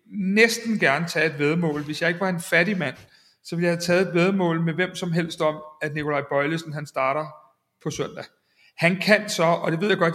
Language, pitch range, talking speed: Danish, 150-195 Hz, 230 wpm